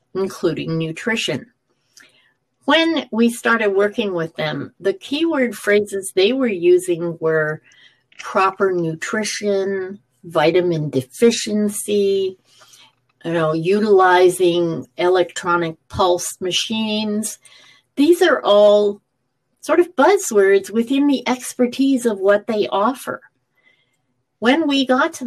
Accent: American